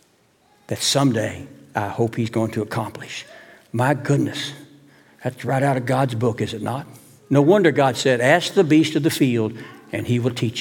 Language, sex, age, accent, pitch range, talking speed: English, male, 60-79, American, 135-195 Hz, 185 wpm